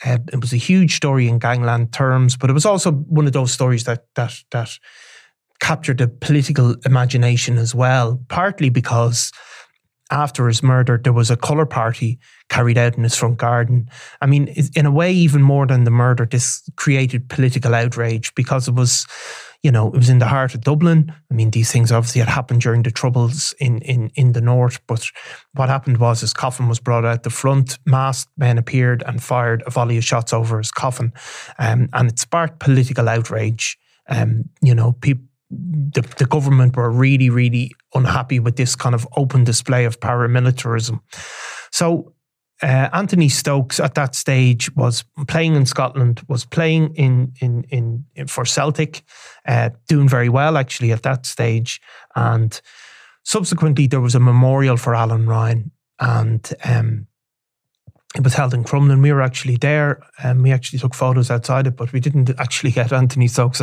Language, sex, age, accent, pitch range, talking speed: English, male, 20-39, Irish, 120-140 Hz, 180 wpm